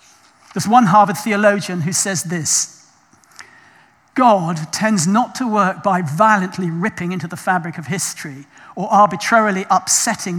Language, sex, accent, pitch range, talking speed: English, male, British, 170-210 Hz, 135 wpm